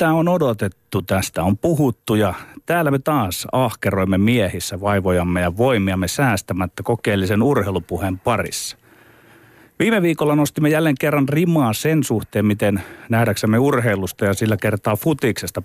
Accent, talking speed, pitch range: native, 130 wpm, 100-135 Hz